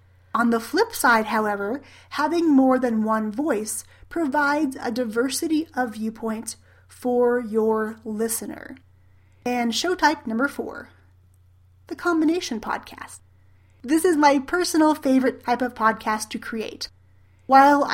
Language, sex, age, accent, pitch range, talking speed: English, female, 30-49, American, 220-275 Hz, 125 wpm